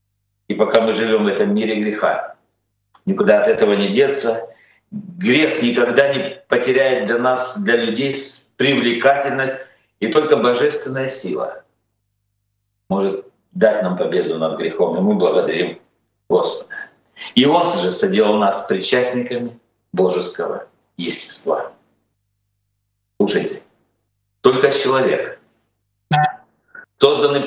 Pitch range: 100-140 Hz